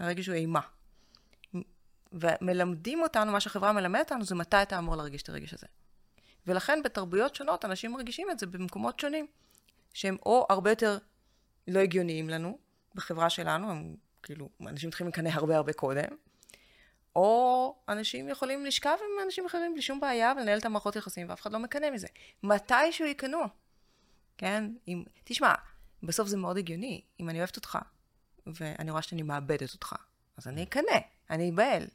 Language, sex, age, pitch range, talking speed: Hebrew, female, 20-39, 170-220 Hz, 160 wpm